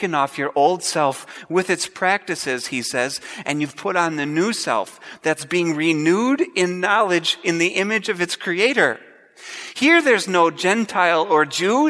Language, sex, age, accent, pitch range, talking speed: English, male, 40-59, American, 165-245 Hz, 165 wpm